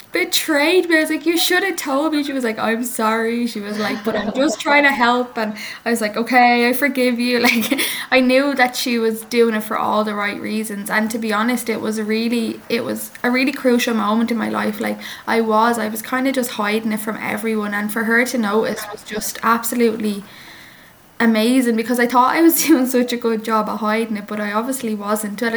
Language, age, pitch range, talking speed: English, 10-29, 215-245 Hz, 235 wpm